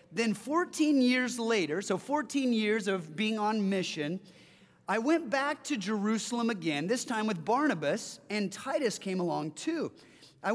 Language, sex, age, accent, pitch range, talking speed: English, male, 30-49, American, 195-280 Hz, 155 wpm